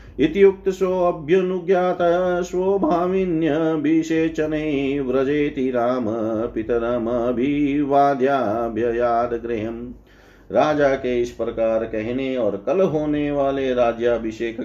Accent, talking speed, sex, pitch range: native, 45 wpm, male, 115-150 Hz